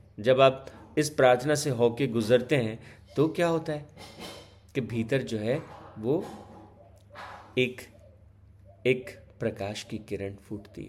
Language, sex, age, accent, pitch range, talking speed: Hindi, male, 50-69, native, 100-125 Hz, 125 wpm